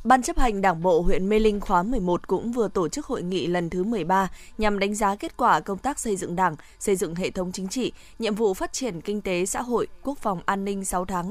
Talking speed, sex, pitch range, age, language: 260 wpm, female, 185-225 Hz, 20-39, Vietnamese